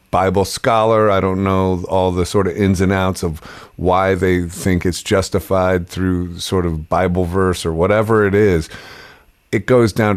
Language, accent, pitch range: English, American, 85-100 Hz